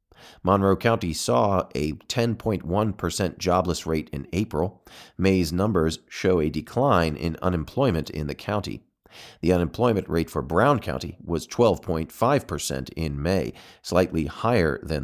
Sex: male